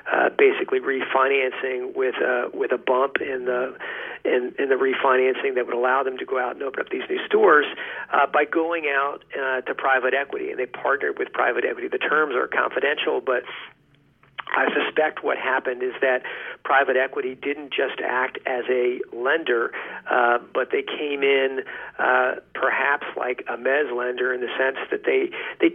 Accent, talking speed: American, 180 wpm